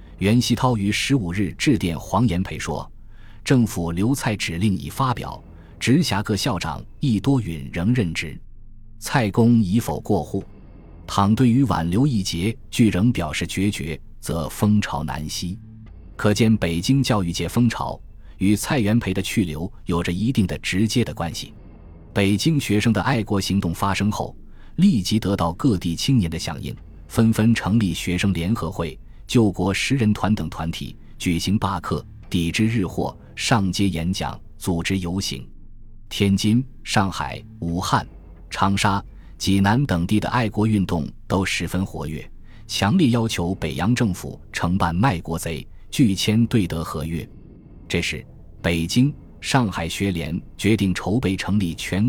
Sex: male